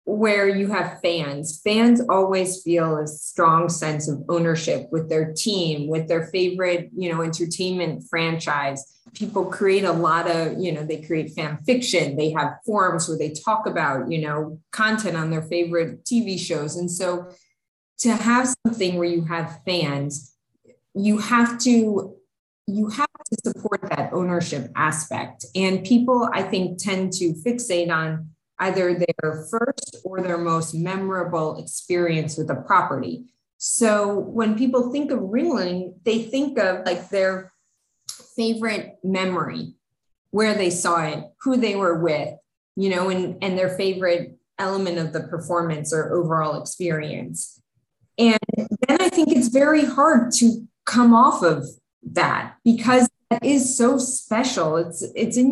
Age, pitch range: 20-39, 165-220 Hz